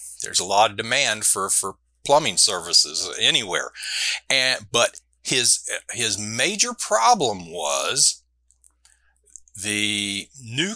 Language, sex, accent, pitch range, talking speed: English, male, American, 95-135 Hz, 105 wpm